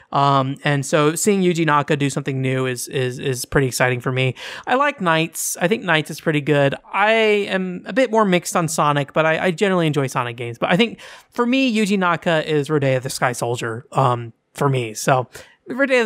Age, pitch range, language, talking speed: 20-39, 140-185 Hz, English, 215 wpm